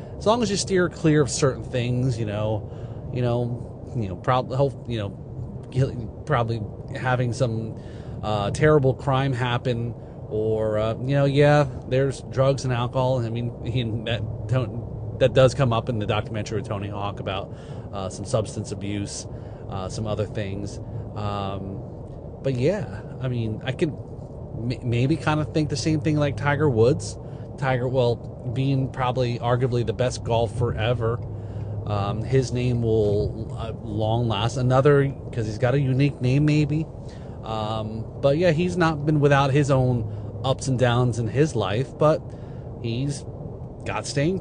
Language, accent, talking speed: English, American, 160 wpm